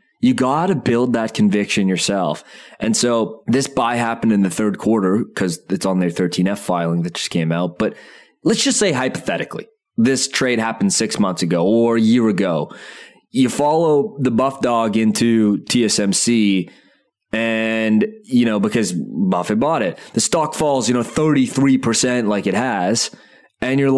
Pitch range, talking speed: 95-135 Hz, 165 wpm